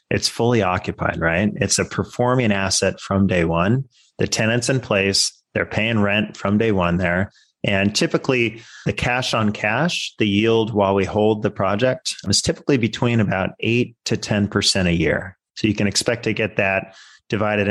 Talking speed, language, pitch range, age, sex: 175 wpm, English, 95-110 Hz, 30-49, male